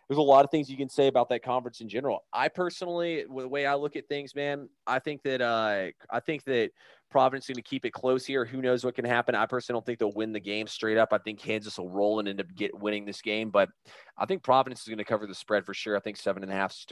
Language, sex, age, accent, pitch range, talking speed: English, male, 20-39, American, 105-130 Hz, 300 wpm